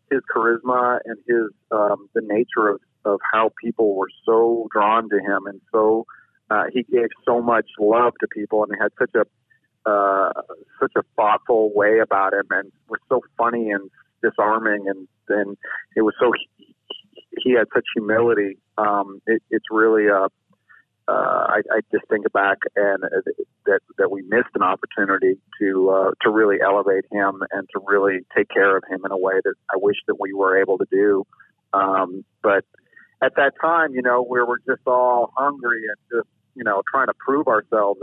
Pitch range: 100-130 Hz